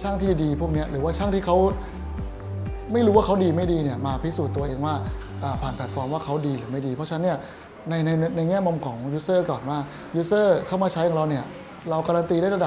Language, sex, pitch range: Thai, male, 135-170 Hz